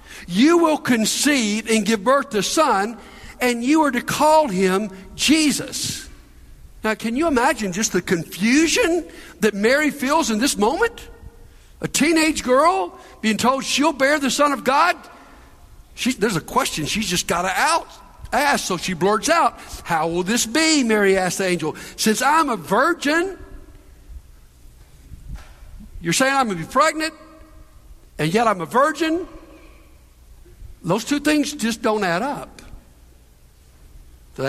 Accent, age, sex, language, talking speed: American, 60-79, male, English, 145 wpm